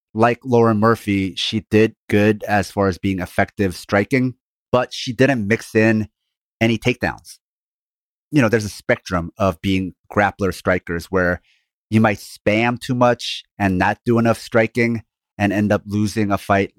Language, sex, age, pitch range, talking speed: English, male, 30-49, 95-115 Hz, 160 wpm